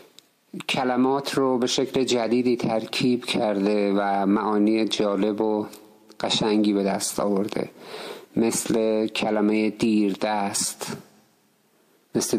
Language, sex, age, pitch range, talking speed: Persian, male, 50-69, 110-140 Hz, 95 wpm